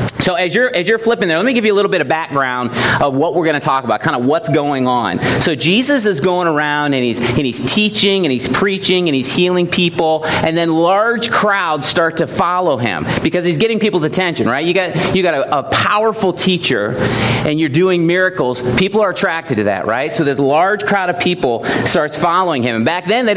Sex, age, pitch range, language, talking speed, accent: male, 40-59, 145-195 Hz, English, 230 wpm, American